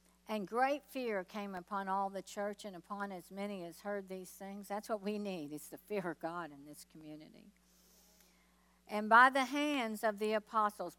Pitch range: 185-230 Hz